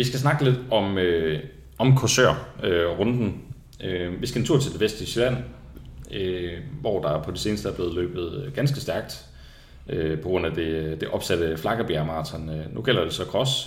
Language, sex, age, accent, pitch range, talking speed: Danish, male, 30-49, native, 85-130 Hz, 195 wpm